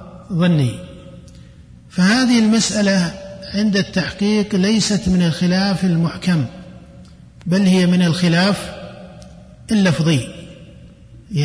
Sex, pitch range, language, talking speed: male, 175-210 Hz, Arabic, 80 wpm